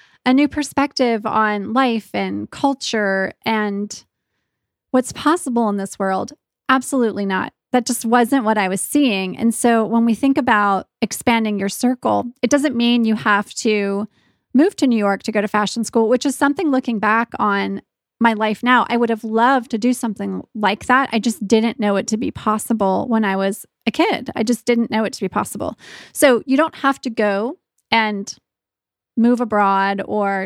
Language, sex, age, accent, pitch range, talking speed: English, female, 20-39, American, 205-250 Hz, 185 wpm